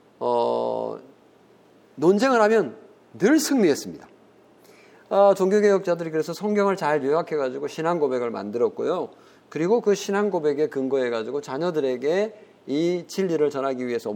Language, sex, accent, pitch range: Korean, male, native, 140-215 Hz